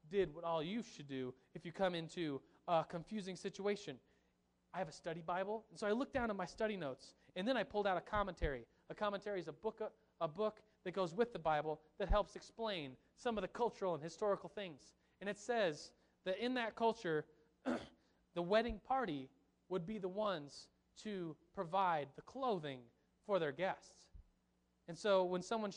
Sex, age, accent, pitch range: male, 30-49, American, 155-200 Hz